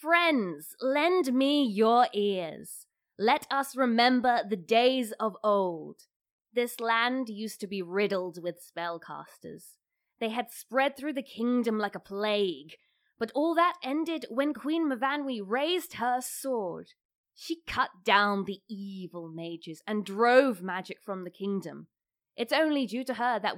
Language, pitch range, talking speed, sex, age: English, 195-270 Hz, 145 wpm, female, 20-39